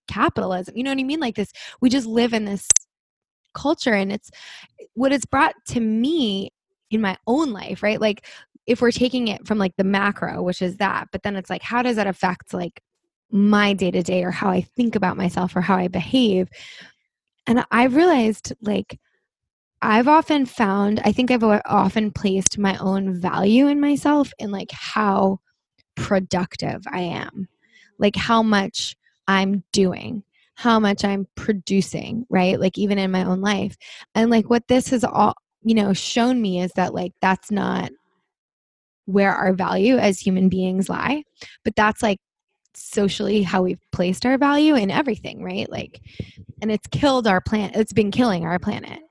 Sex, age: female, 20-39